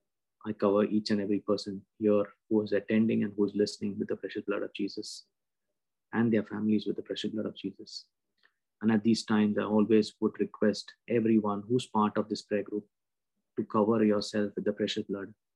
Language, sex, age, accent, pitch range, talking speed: English, male, 20-39, Indian, 105-115 Hz, 195 wpm